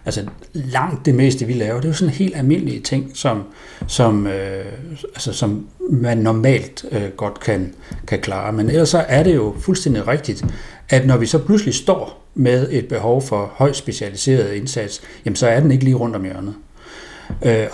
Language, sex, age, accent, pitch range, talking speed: Danish, male, 60-79, native, 105-140 Hz, 190 wpm